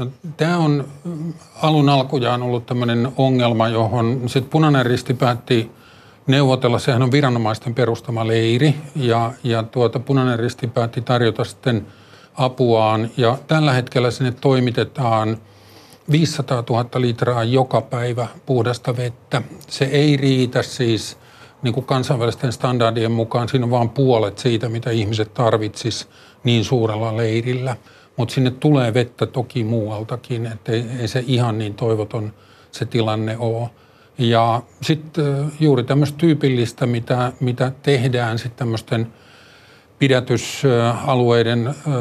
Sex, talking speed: male, 120 wpm